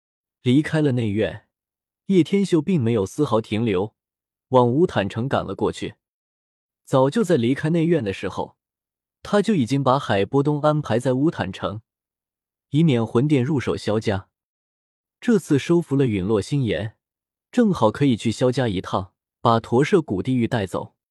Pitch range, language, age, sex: 105-155 Hz, Chinese, 20-39, male